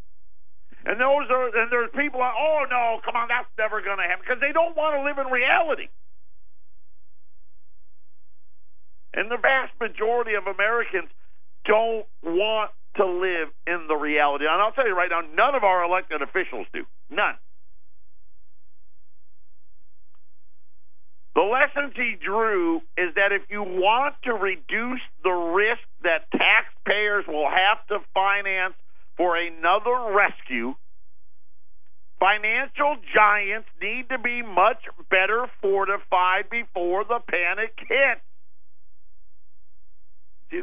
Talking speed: 125 wpm